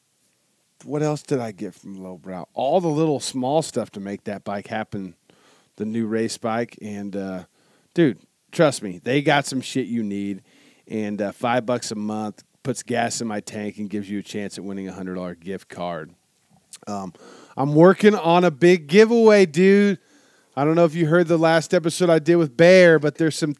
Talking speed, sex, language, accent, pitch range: 200 wpm, male, English, American, 115-155 Hz